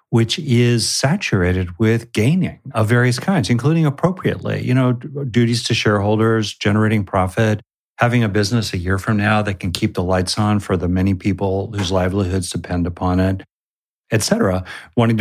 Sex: male